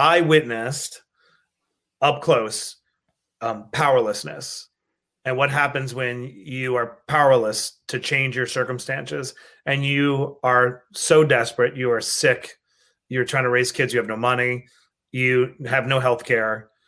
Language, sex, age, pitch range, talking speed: English, male, 30-49, 125-150 Hz, 135 wpm